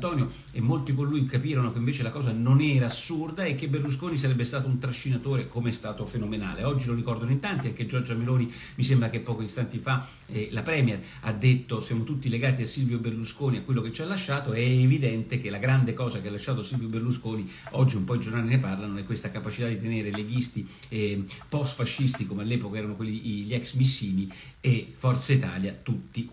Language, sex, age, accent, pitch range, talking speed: Italian, male, 50-69, native, 110-140 Hz, 210 wpm